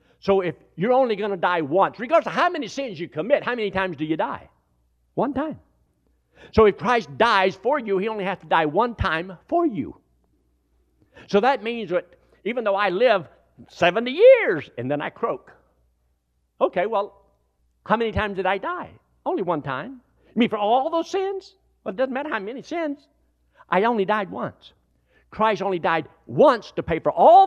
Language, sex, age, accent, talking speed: English, male, 60-79, American, 190 wpm